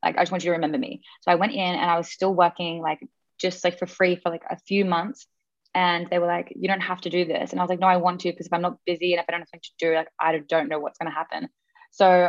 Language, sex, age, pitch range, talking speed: English, female, 20-39, 165-190 Hz, 325 wpm